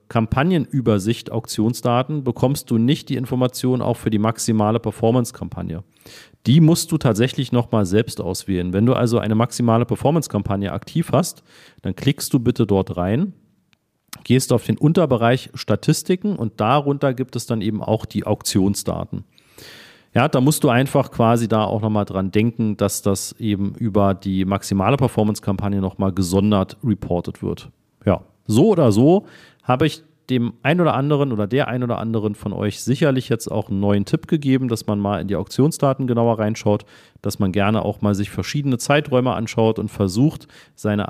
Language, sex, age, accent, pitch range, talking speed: German, male, 40-59, German, 105-130 Hz, 165 wpm